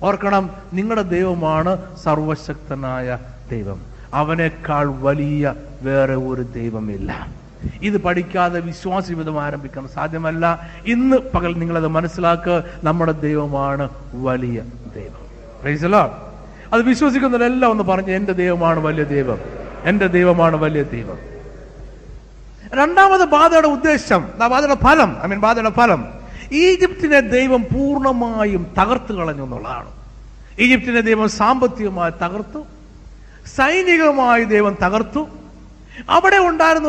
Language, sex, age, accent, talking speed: Malayalam, male, 60-79, native, 95 wpm